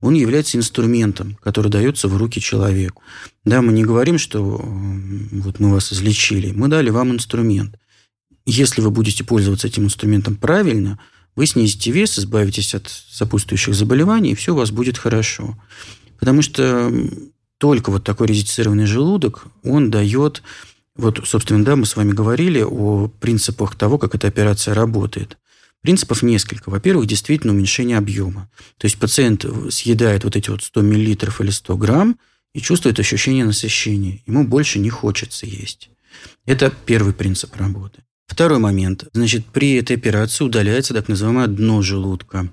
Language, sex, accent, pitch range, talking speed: Russian, male, native, 100-125 Hz, 150 wpm